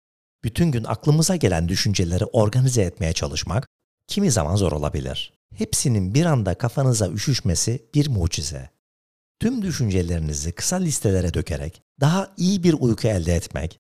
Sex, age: male, 60-79